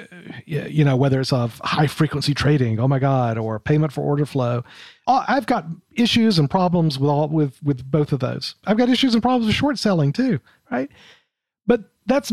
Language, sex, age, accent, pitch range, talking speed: English, male, 40-59, American, 140-180 Hz, 195 wpm